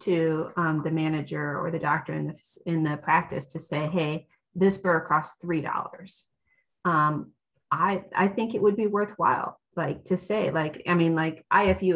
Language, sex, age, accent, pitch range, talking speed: English, female, 30-49, American, 160-195 Hz, 175 wpm